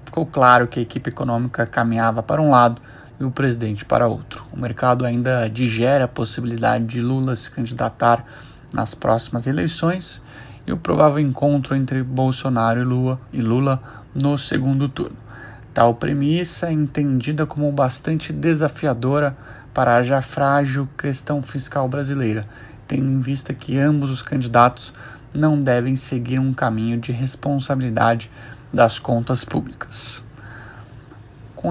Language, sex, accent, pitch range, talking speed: Portuguese, male, Brazilian, 120-140 Hz, 135 wpm